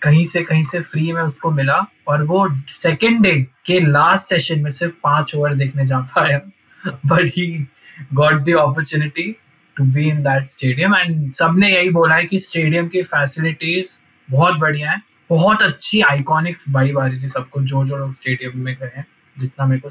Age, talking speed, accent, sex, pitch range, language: 20-39, 140 wpm, native, male, 135-160 Hz, Hindi